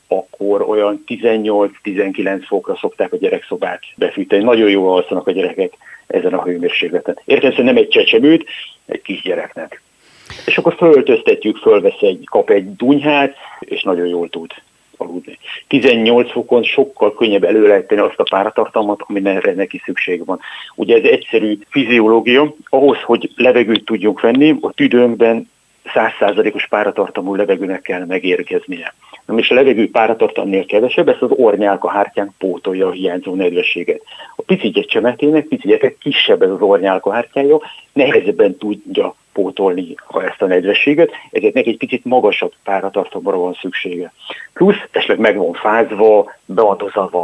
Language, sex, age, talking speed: Hungarian, male, 60-79, 135 wpm